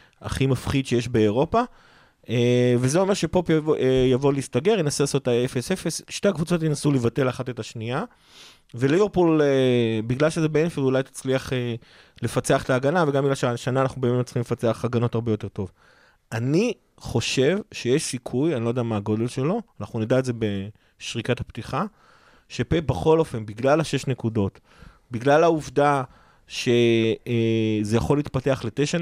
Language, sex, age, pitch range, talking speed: Hebrew, male, 30-49, 120-145 Hz, 145 wpm